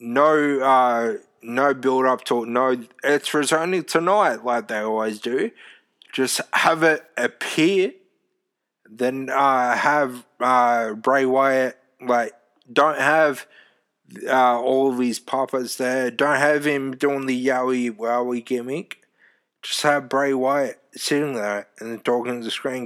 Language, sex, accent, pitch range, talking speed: English, male, Australian, 115-135 Hz, 140 wpm